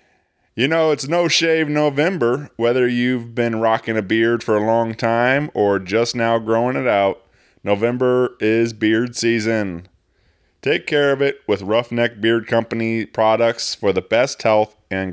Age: 20-39